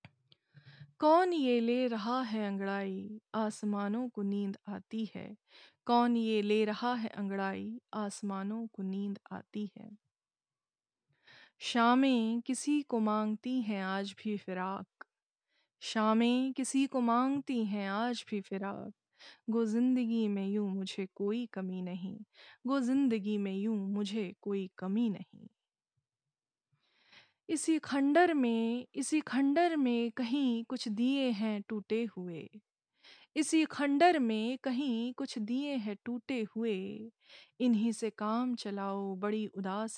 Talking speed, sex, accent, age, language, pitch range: 120 wpm, female, native, 20-39, Hindi, 200-250 Hz